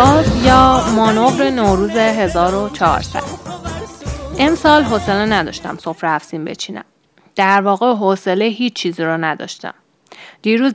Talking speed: 100 wpm